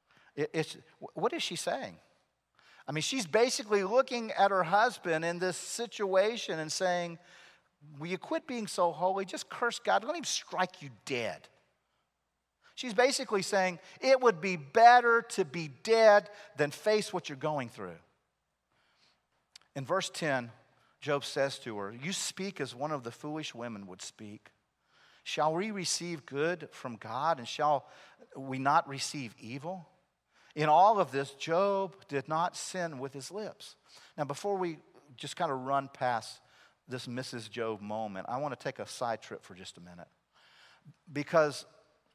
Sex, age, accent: male, 40-59, American